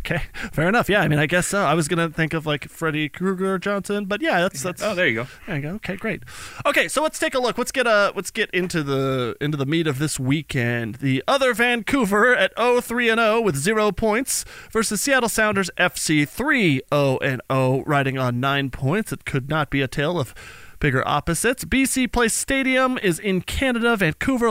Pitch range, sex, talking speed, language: 140-210 Hz, male, 225 wpm, English